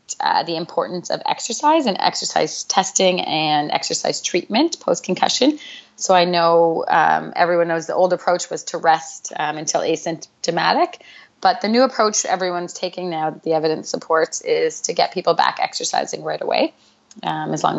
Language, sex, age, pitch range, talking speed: English, female, 30-49, 170-215 Hz, 165 wpm